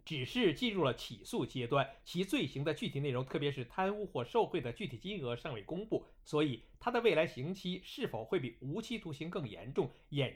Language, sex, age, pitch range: Chinese, male, 50-69, 130-205 Hz